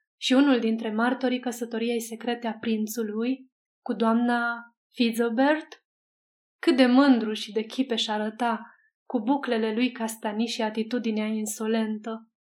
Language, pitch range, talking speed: Romanian, 225-260 Hz, 120 wpm